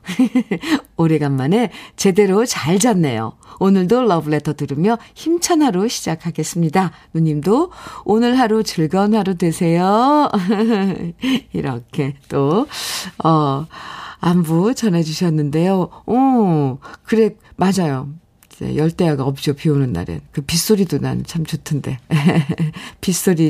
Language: Korean